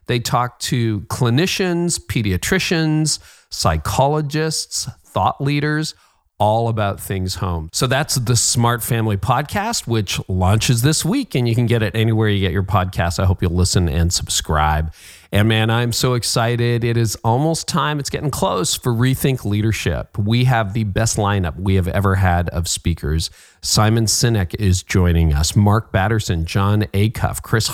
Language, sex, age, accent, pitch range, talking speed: English, male, 40-59, American, 100-130 Hz, 160 wpm